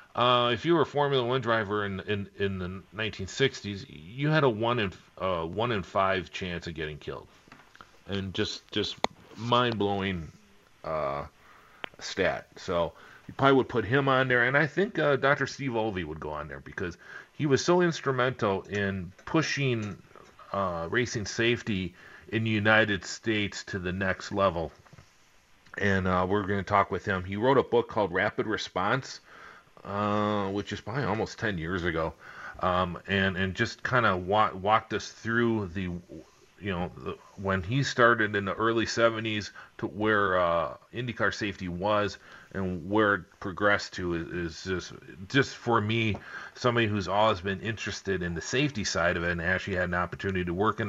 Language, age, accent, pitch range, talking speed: English, 40-59, American, 95-115 Hz, 175 wpm